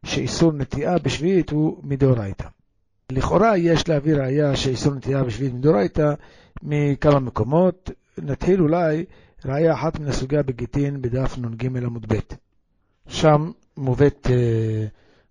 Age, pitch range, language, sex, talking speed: 60-79, 130-165 Hz, Hebrew, male, 115 wpm